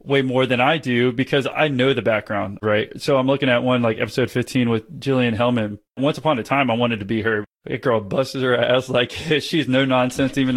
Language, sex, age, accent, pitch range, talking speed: English, male, 20-39, American, 115-135 Hz, 235 wpm